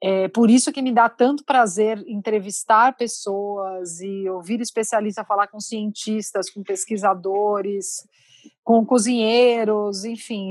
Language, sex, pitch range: Portuguese, female, 195-240 Hz